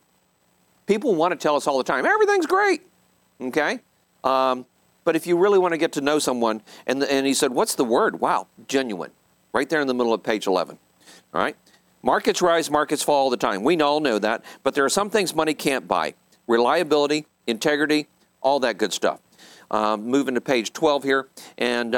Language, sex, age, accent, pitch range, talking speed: English, male, 50-69, American, 120-160 Hz, 200 wpm